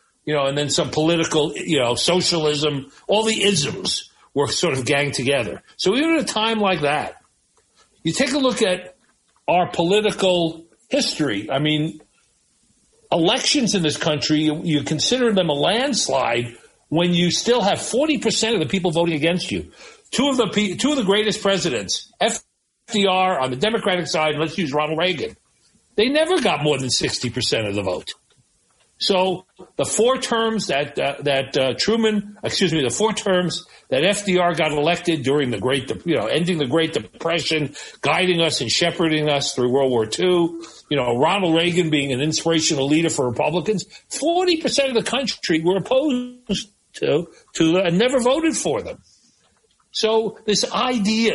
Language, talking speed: English, 170 wpm